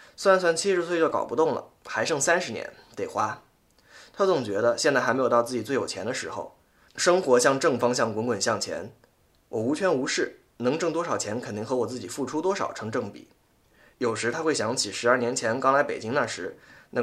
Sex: male